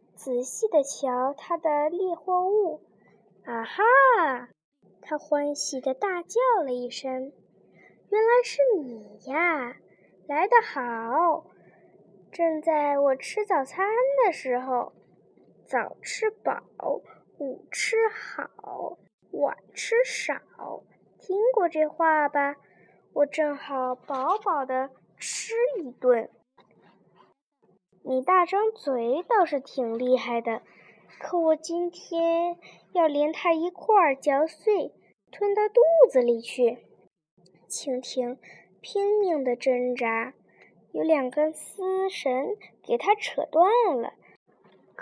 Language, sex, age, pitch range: Chinese, female, 10-29, 260-385 Hz